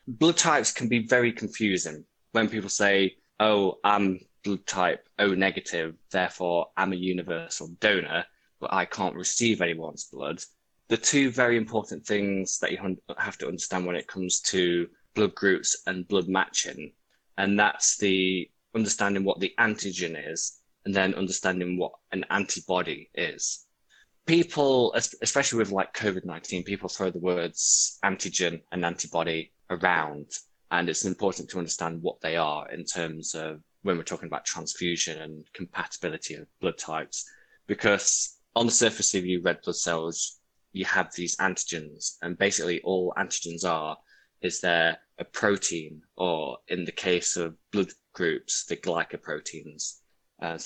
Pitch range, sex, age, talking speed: 85-105 Hz, male, 20-39, 150 wpm